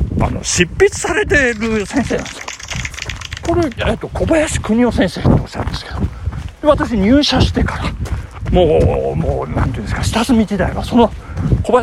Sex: male